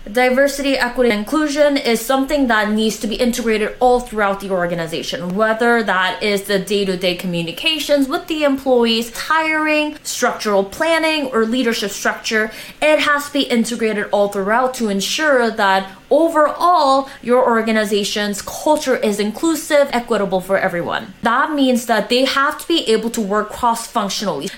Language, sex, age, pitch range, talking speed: English, female, 20-39, 210-275 Hz, 145 wpm